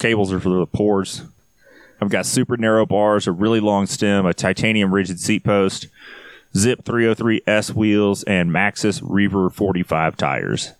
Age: 30-49